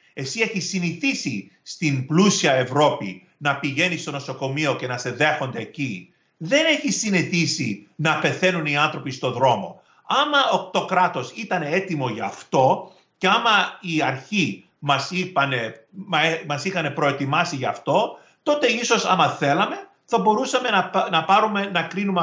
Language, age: Greek, 40-59